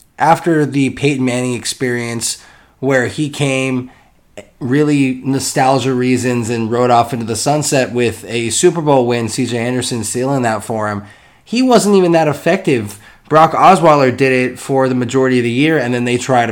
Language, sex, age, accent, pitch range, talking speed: English, male, 20-39, American, 110-135 Hz, 170 wpm